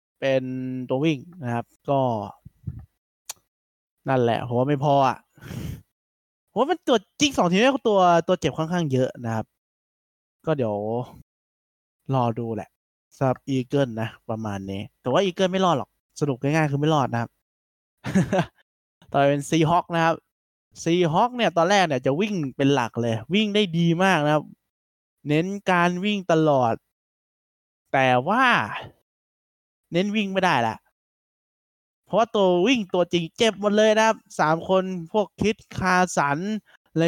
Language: Thai